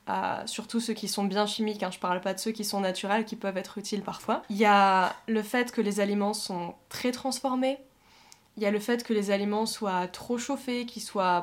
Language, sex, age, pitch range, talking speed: French, female, 20-39, 195-240 Hz, 235 wpm